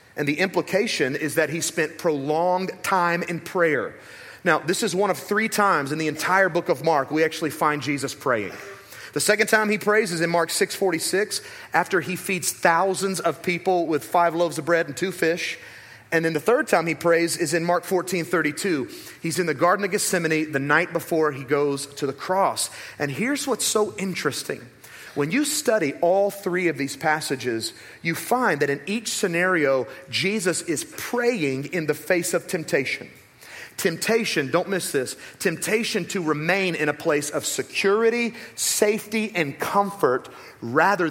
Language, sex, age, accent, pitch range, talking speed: English, male, 30-49, American, 150-200 Hz, 180 wpm